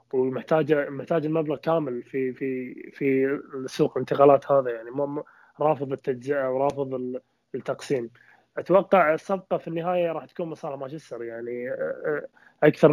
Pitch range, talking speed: 135-155 Hz, 120 wpm